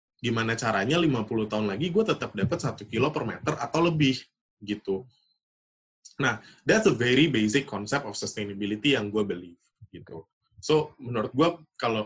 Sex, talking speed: male, 155 wpm